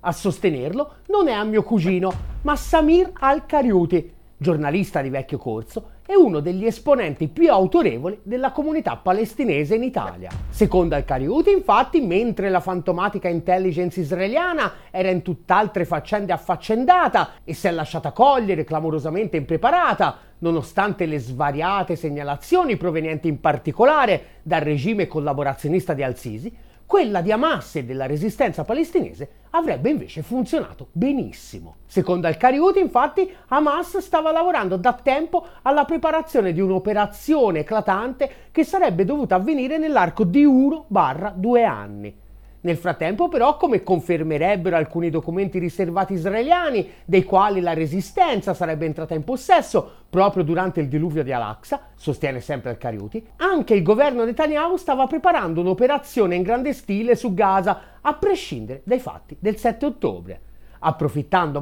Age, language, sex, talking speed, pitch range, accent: 30-49, Italian, male, 130 wpm, 165-275 Hz, native